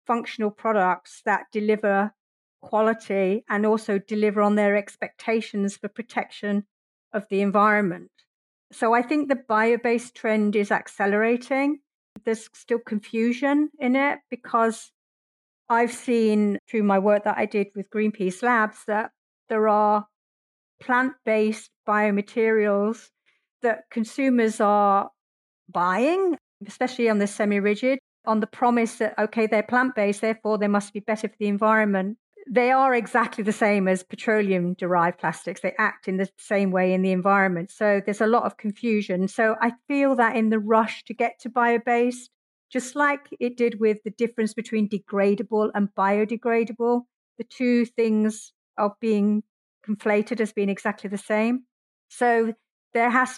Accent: British